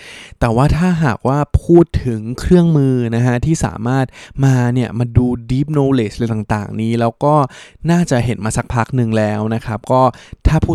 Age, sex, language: 20-39, male, Thai